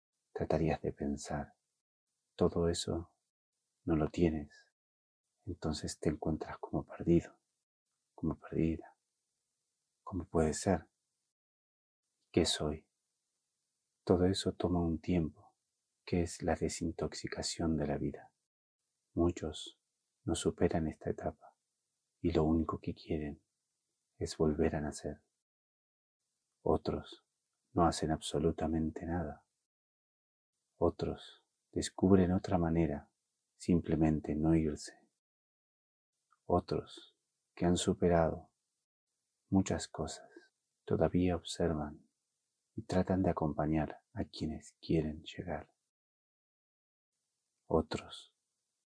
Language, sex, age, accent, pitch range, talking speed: Spanish, male, 30-49, Argentinian, 80-90 Hz, 90 wpm